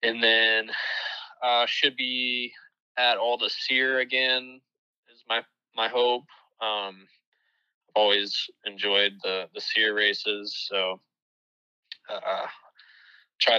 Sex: male